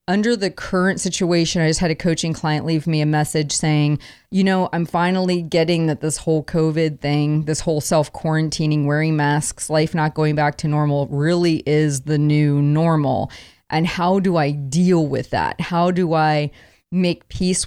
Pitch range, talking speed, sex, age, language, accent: 155-190 Hz, 180 wpm, female, 30-49, English, American